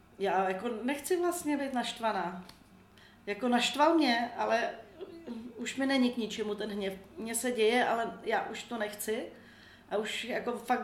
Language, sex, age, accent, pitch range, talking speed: Czech, female, 40-59, native, 195-230 Hz, 160 wpm